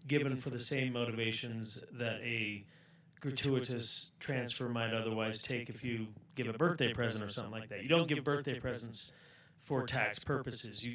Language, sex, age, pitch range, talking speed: English, male, 30-49, 115-145 Hz, 170 wpm